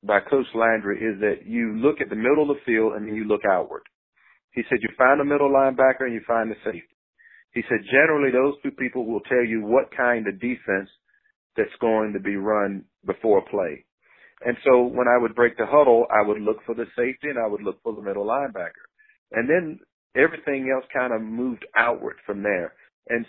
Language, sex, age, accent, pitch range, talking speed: English, male, 40-59, American, 105-130 Hz, 215 wpm